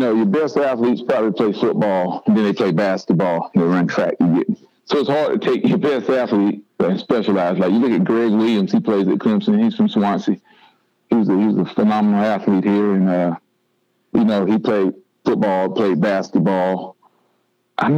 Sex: male